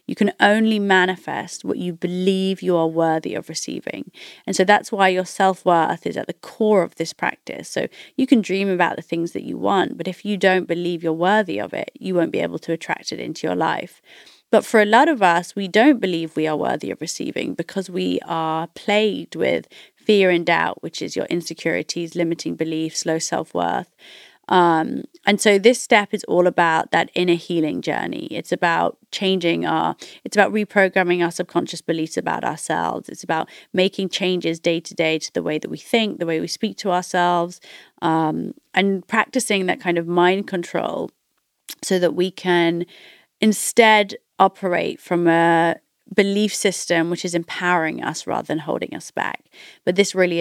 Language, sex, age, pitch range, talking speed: German, female, 30-49, 170-205 Hz, 185 wpm